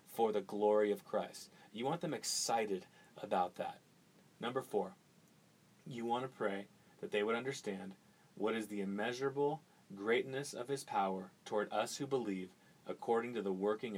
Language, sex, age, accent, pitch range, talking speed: English, male, 30-49, American, 105-130 Hz, 160 wpm